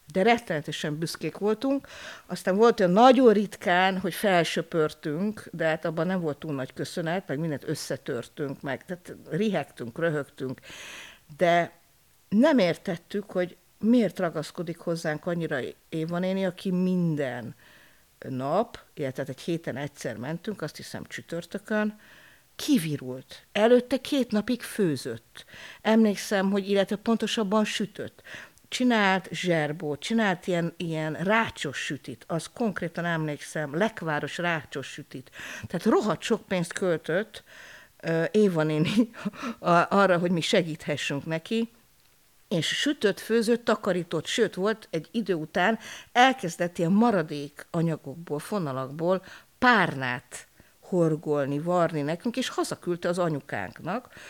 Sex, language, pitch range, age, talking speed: female, Hungarian, 155-215 Hz, 50-69, 115 wpm